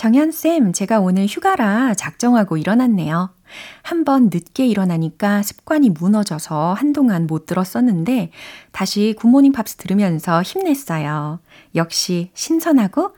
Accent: native